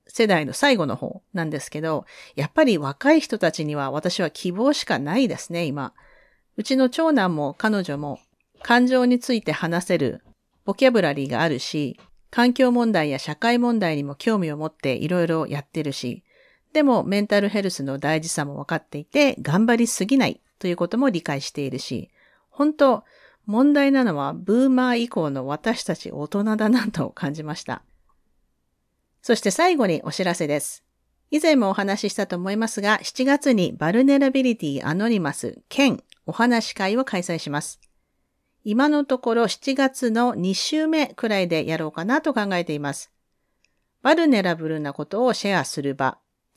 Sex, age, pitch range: female, 40-59, 150-245 Hz